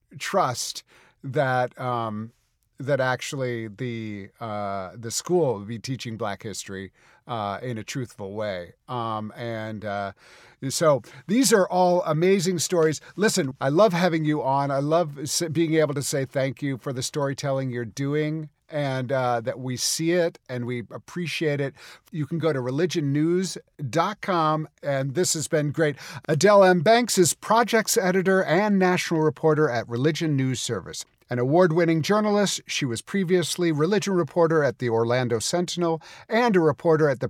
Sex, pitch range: male, 125-175 Hz